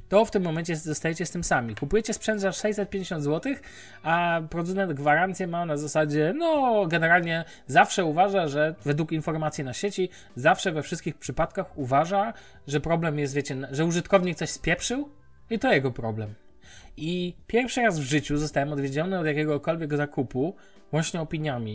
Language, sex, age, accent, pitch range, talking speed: Polish, male, 20-39, native, 140-175 Hz, 155 wpm